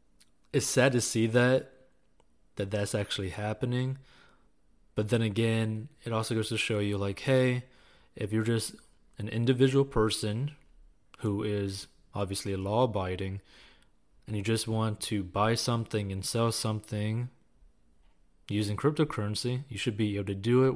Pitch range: 95-115 Hz